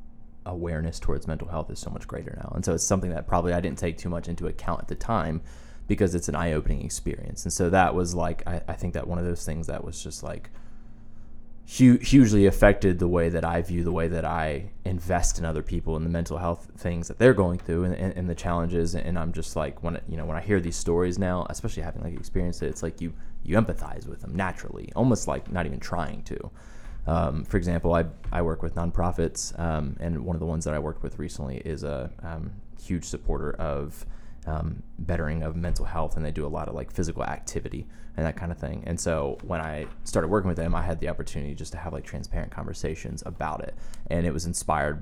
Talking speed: 235 wpm